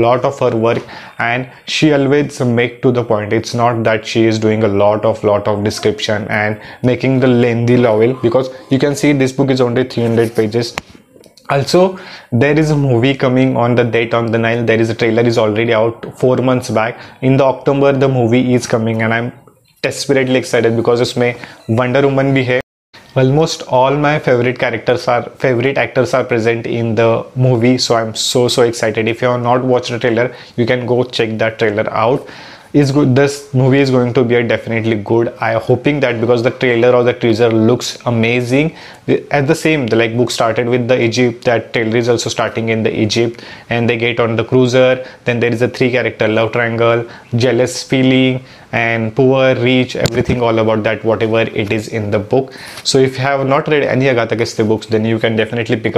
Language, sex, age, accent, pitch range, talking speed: English, male, 20-39, Indian, 115-130 Hz, 205 wpm